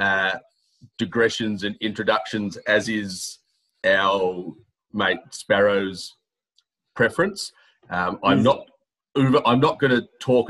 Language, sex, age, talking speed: English, male, 30-49, 105 wpm